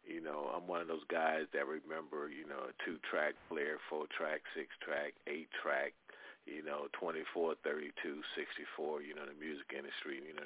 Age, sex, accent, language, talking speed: 40-59, male, American, English, 160 wpm